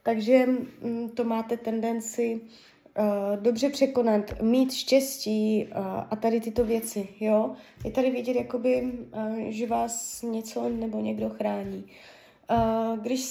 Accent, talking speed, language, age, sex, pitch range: native, 125 wpm, Czech, 20-39, female, 225-265 Hz